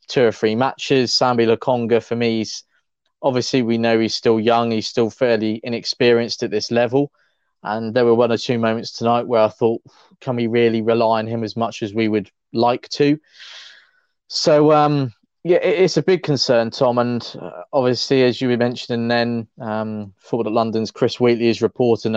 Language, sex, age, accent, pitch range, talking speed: English, male, 20-39, British, 115-130 Hz, 185 wpm